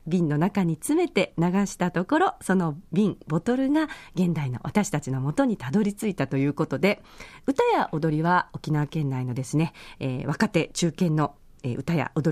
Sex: female